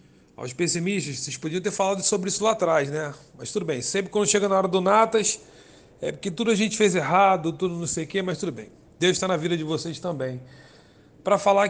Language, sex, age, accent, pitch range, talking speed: Portuguese, male, 40-59, Brazilian, 180-230 Hz, 230 wpm